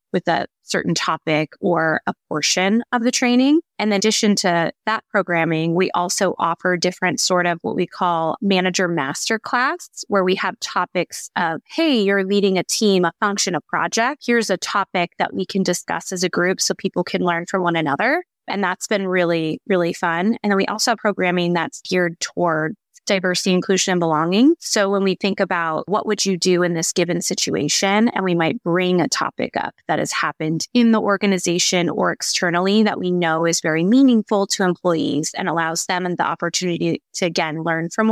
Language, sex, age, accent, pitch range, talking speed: English, female, 20-39, American, 175-215 Hz, 190 wpm